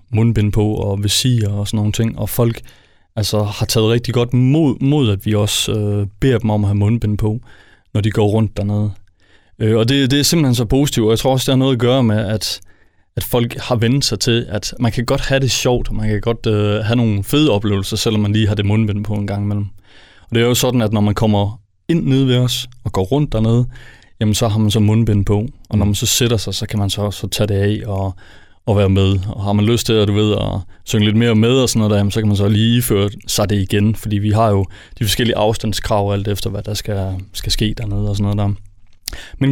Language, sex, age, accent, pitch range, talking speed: Danish, male, 30-49, native, 105-120 Hz, 260 wpm